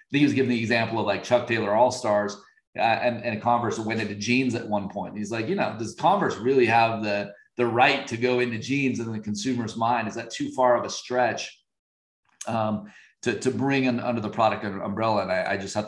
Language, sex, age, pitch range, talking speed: English, male, 30-49, 105-130 Hz, 225 wpm